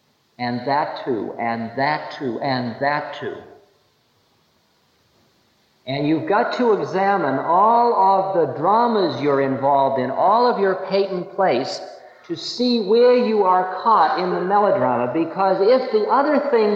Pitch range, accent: 170-240 Hz, American